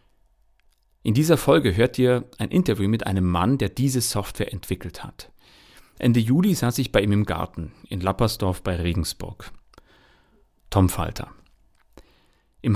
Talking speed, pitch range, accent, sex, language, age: 140 wpm, 100-130 Hz, German, male, German, 40-59